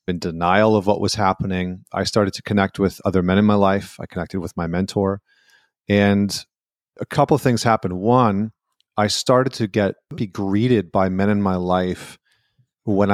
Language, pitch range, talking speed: English, 95-110 Hz, 185 wpm